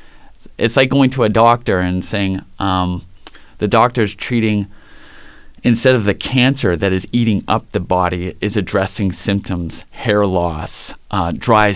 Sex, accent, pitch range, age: male, American, 95-115 Hz, 30-49